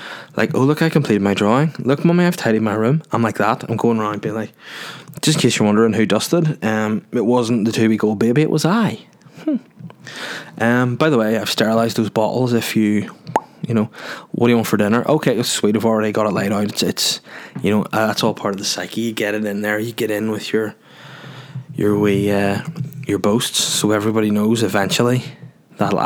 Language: English